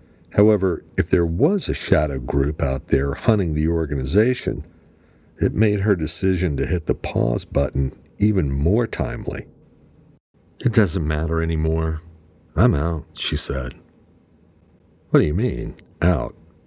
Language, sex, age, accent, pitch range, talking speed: English, male, 50-69, American, 75-90 Hz, 135 wpm